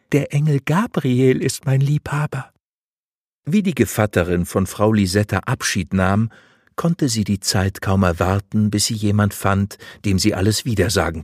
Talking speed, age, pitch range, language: 150 wpm, 50-69, 95-130 Hz, German